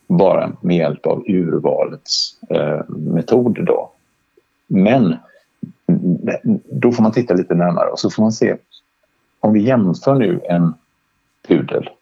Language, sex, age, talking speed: Swedish, male, 50-69, 130 wpm